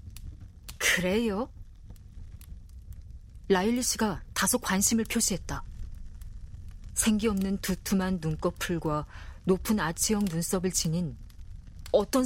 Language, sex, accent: Korean, female, native